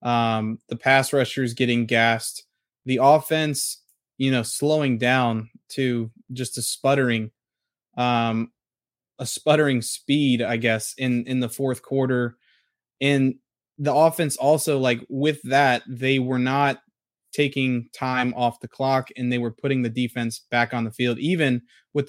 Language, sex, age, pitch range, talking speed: English, male, 20-39, 120-135 Hz, 145 wpm